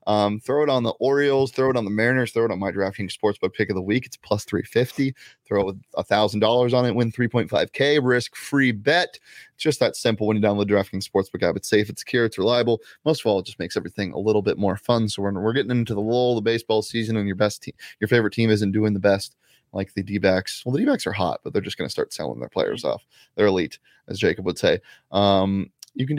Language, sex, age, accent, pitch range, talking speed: English, male, 20-39, American, 105-160 Hz, 255 wpm